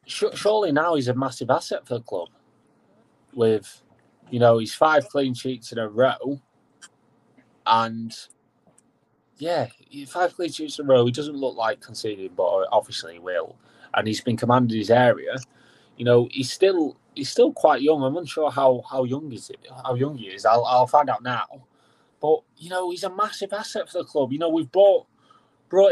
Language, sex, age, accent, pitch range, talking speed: English, male, 20-39, British, 125-165 Hz, 190 wpm